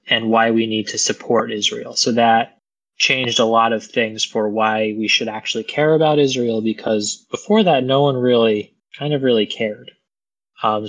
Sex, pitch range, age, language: male, 105-120 Hz, 20-39, English